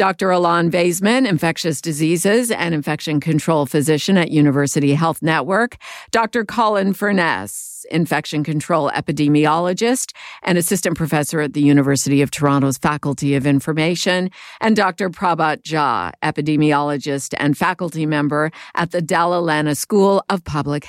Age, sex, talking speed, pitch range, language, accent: 50-69, female, 130 wpm, 150-185 Hz, English, American